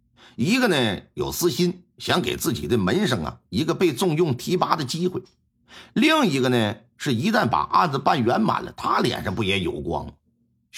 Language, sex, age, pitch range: Chinese, male, 50-69, 120-185 Hz